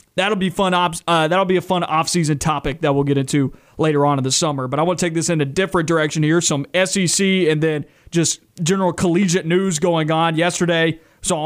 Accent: American